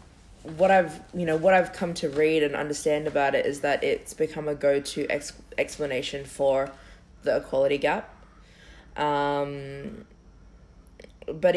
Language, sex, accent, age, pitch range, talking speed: English, female, Australian, 20-39, 140-155 Hz, 145 wpm